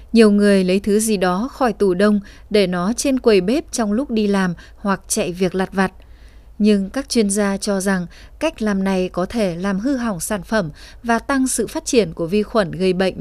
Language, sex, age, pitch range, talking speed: Vietnamese, female, 20-39, 190-230 Hz, 225 wpm